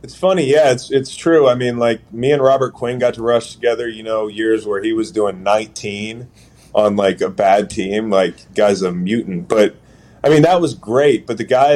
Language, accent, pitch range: English, American, 100-120 Hz